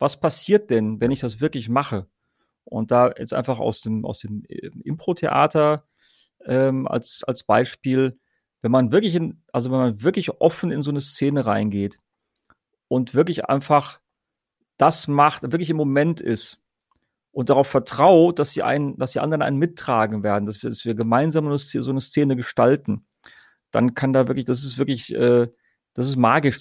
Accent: German